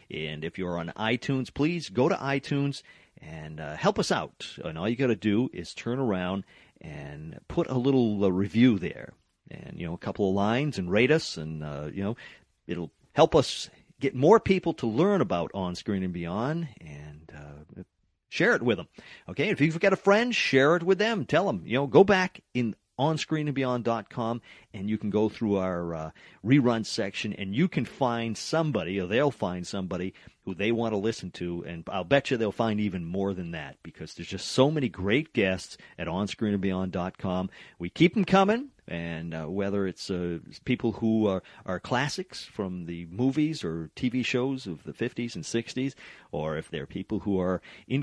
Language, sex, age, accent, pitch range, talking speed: English, male, 50-69, American, 90-135 Hz, 195 wpm